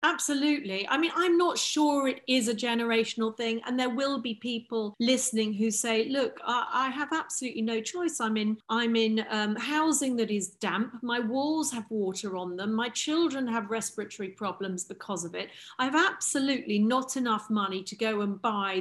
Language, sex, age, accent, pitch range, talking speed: English, female, 40-59, British, 205-270 Hz, 190 wpm